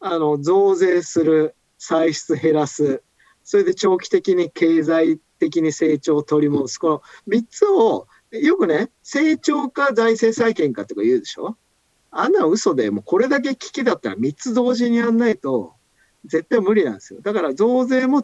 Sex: male